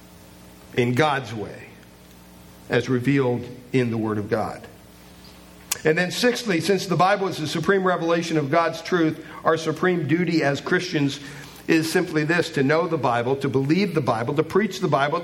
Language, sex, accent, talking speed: English, male, American, 170 wpm